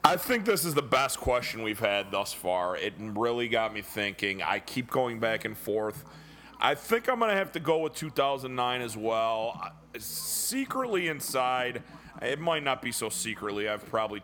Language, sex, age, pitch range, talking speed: English, male, 30-49, 110-145 Hz, 185 wpm